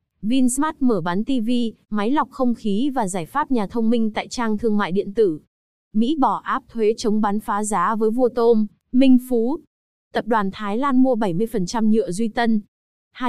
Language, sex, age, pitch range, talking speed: Vietnamese, female, 20-39, 205-250 Hz, 195 wpm